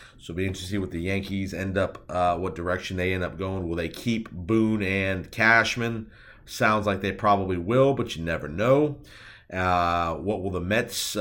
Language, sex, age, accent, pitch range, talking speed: English, male, 40-59, American, 95-110 Hz, 200 wpm